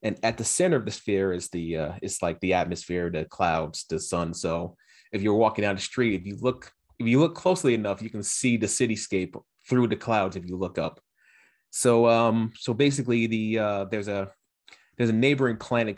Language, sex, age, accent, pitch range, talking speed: English, male, 30-49, American, 90-115 Hz, 215 wpm